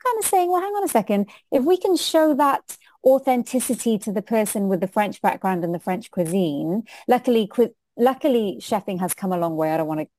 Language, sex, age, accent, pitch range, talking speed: English, female, 30-49, British, 175-240 Hz, 225 wpm